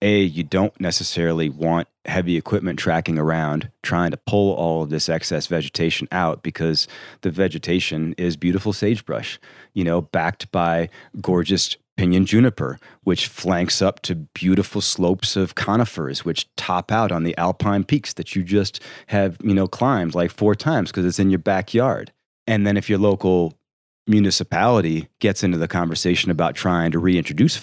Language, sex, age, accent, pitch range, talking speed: English, male, 30-49, American, 85-110 Hz, 165 wpm